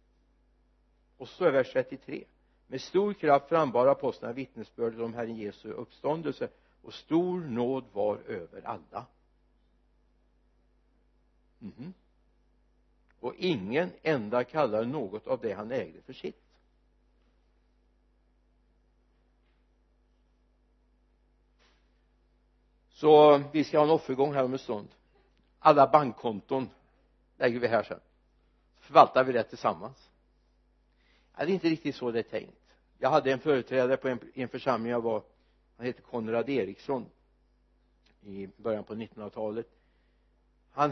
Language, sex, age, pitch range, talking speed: Swedish, male, 60-79, 105-140 Hz, 115 wpm